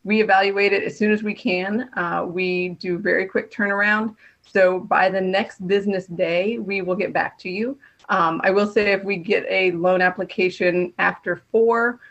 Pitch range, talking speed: 180-215 Hz, 190 wpm